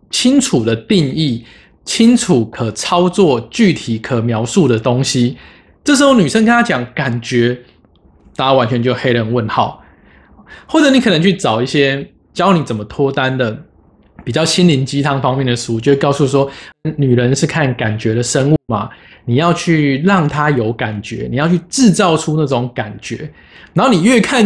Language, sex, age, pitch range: Chinese, male, 20-39, 125-180 Hz